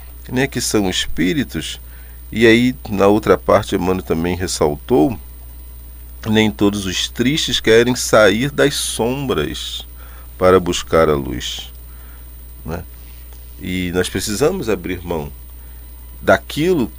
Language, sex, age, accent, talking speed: Portuguese, male, 40-59, Brazilian, 100 wpm